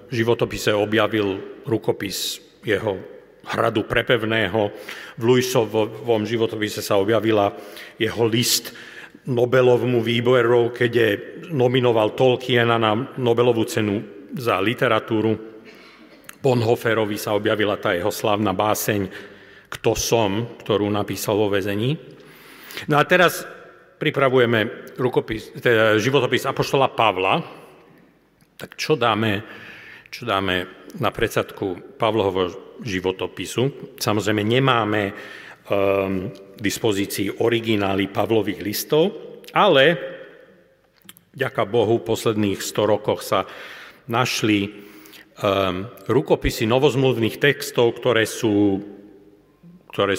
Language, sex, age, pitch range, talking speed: Slovak, male, 40-59, 100-120 Hz, 95 wpm